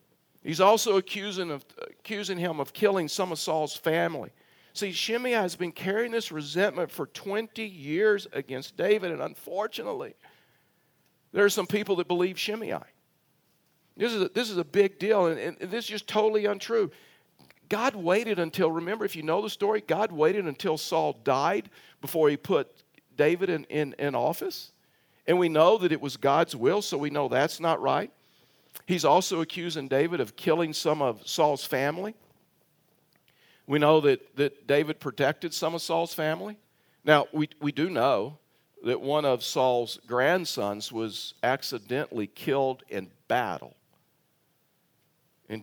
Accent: American